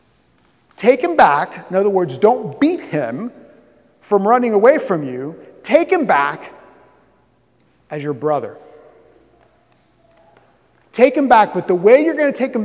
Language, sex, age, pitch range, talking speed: English, male, 30-49, 165-235 Hz, 145 wpm